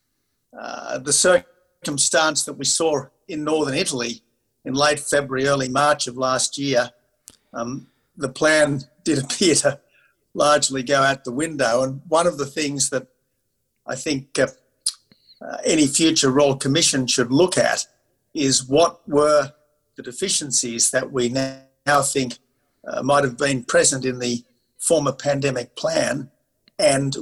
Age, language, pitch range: 50-69, English, 125-150 Hz